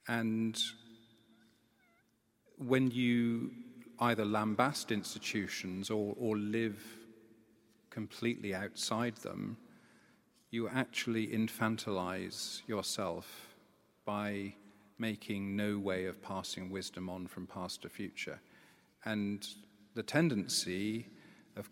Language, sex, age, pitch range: English, male, 40-59, 100-115 Hz